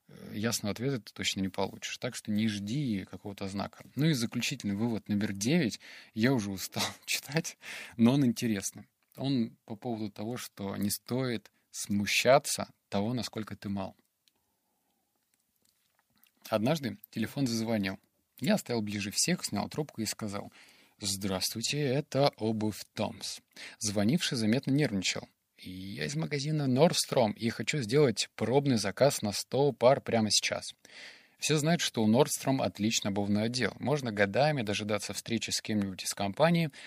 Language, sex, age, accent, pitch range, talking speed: Russian, male, 20-39, native, 100-135 Hz, 140 wpm